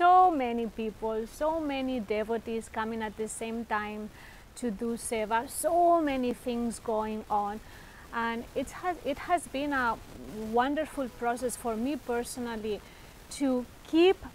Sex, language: female, English